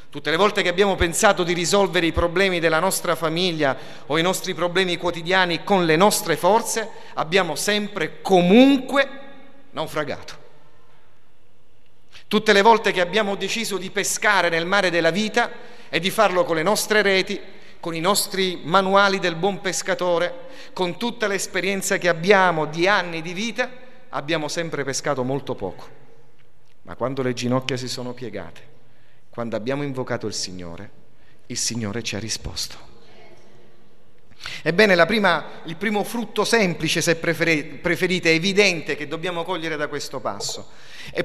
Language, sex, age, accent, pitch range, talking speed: Italian, male, 40-59, native, 135-195 Hz, 145 wpm